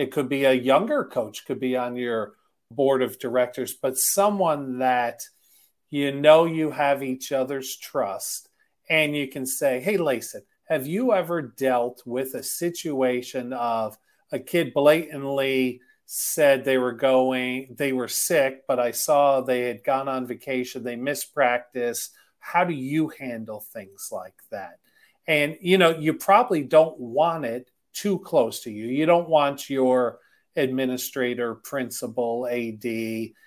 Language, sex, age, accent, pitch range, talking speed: English, male, 40-59, American, 125-155 Hz, 150 wpm